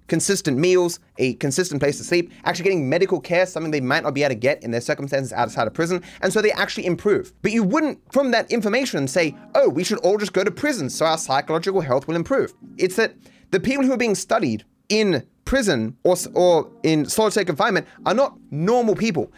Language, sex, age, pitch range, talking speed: English, male, 30-49, 160-225 Hz, 215 wpm